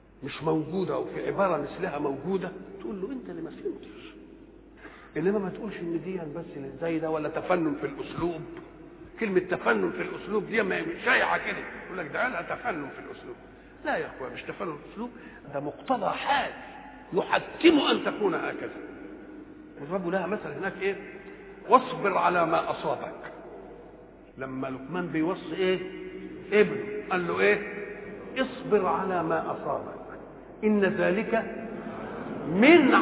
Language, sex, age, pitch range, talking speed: English, male, 60-79, 185-310 Hz, 140 wpm